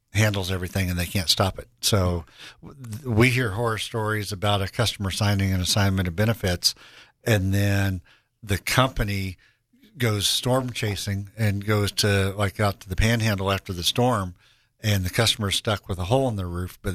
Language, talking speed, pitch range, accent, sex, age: English, 175 wpm, 95-110 Hz, American, male, 60-79